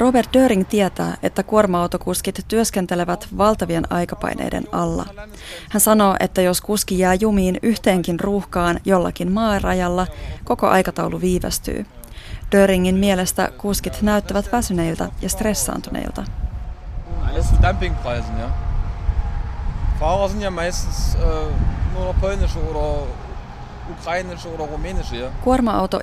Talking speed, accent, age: 70 wpm, native, 20-39